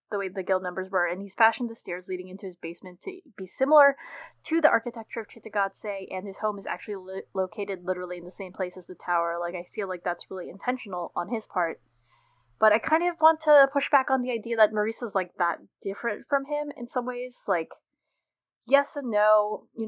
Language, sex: English, female